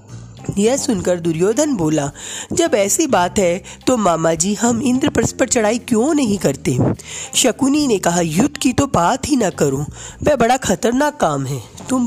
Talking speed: 170 wpm